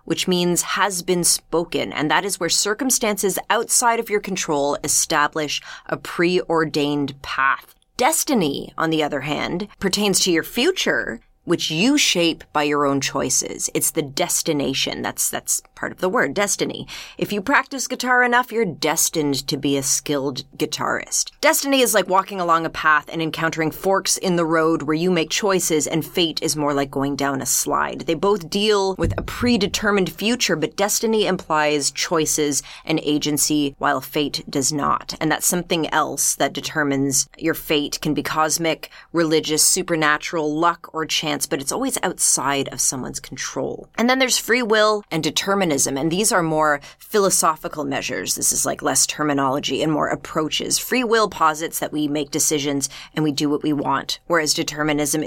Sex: female